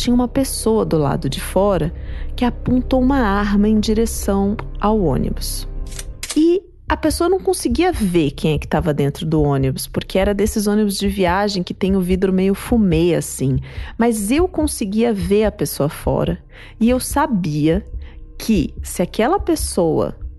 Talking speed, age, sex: 160 wpm, 30-49, female